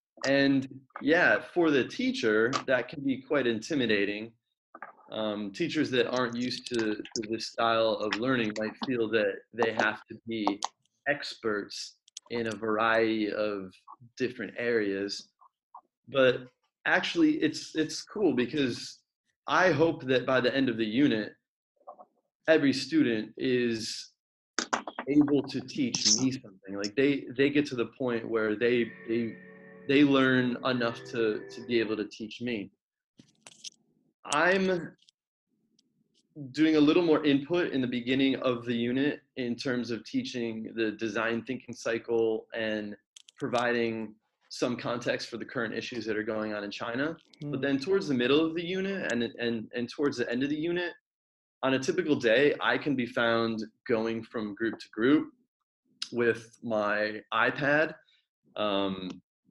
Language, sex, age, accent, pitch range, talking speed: English, male, 30-49, American, 110-140 Hz, 145 wpm